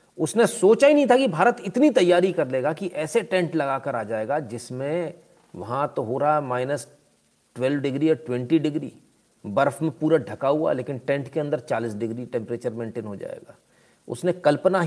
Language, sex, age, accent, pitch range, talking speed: Hindi, male, 40-59, native, 125-165 Hz, 180 wpm